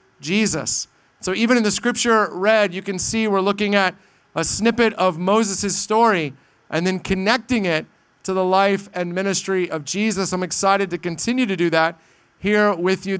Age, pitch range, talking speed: 40-59, 175-210 Hz, 175 wpm